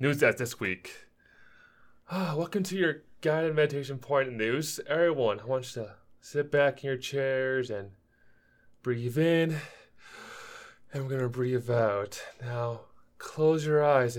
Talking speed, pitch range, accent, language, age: 145 wpm, 125-160 Hz, American, English, 20-39